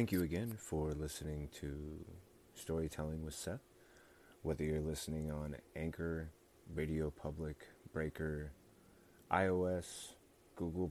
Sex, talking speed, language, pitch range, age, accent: male, 105 wpm, English, 80-90 Hz, 30-49, American